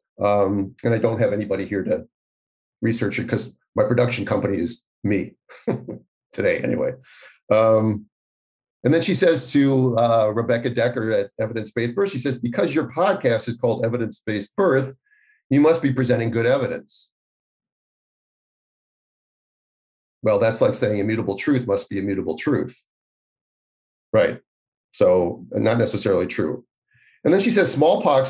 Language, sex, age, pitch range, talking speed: English, male, 40-59, 105-130 Hz, 140 wpm